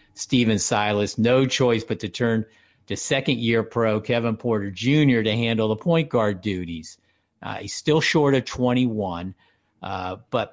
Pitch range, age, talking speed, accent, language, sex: 95-115 Hz, 50-69, 155 wpm, American, English, male